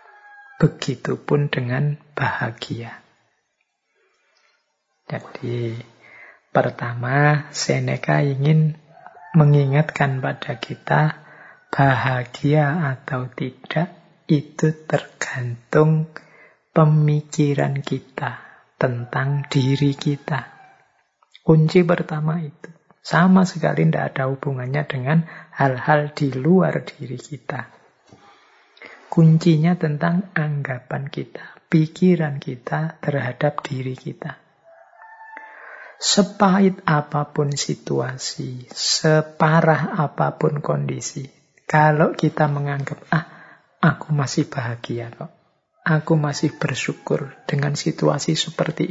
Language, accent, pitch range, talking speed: Indonesian, native, 140-165 Hz, 75 wpm